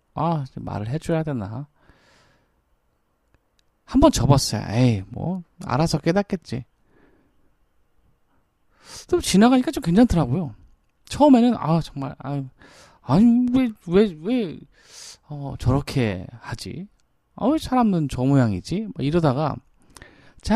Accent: native